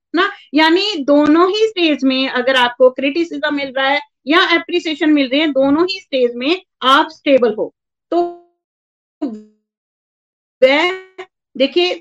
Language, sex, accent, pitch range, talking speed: Hindi, female, native, 270-345 Hz, 120 wpm